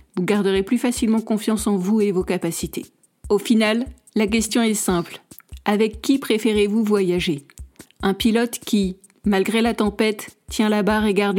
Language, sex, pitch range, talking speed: French, female, 205-240 Hz, 165 wpm